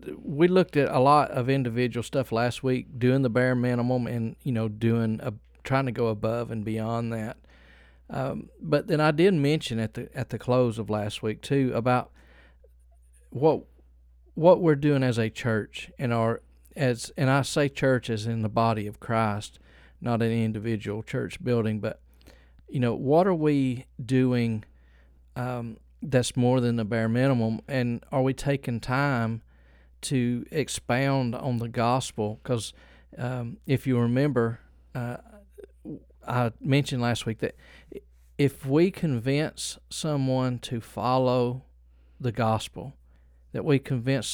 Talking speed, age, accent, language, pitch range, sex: 150 wpm, 40-59, American, English, 105-130 Hz, male